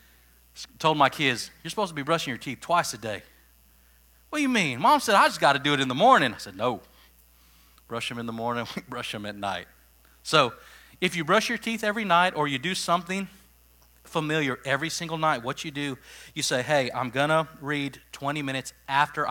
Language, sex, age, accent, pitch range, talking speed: English, male, 40-59, American, 120-160 Hz, 220 wpm